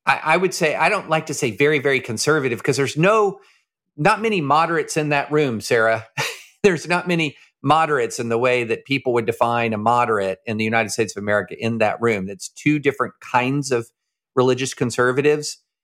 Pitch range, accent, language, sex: 110-140 Hz, American, English, male